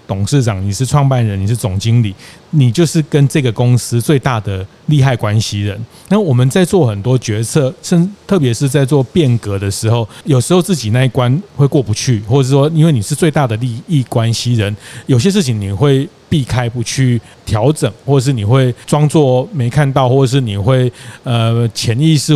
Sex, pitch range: male, 115-140 Hz